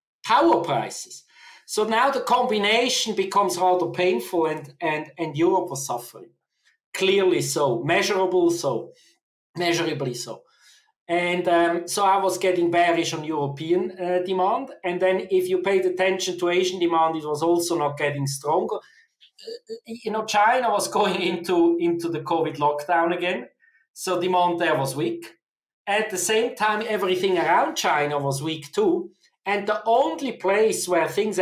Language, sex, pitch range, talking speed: English, male, 150-195 Hz, 155 wpm